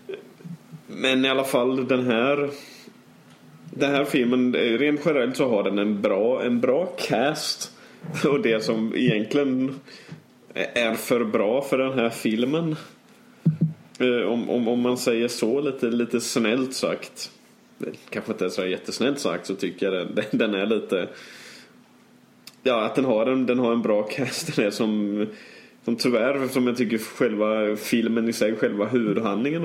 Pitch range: 105-130 Hz